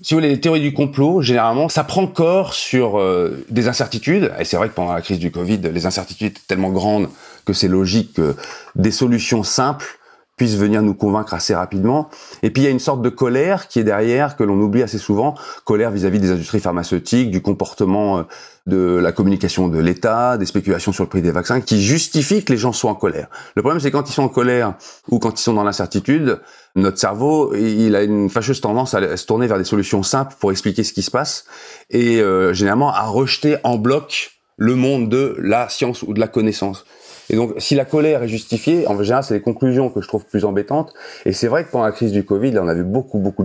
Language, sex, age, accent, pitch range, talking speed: French, male, 40-59, French, 100-135 Hz, 230 wpm